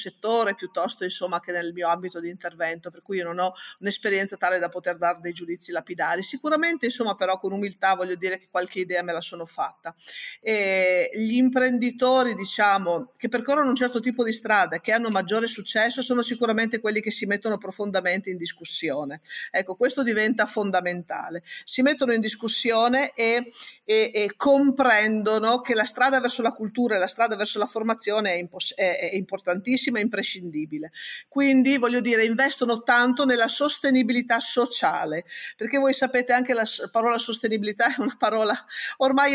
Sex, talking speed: female, 165 wpm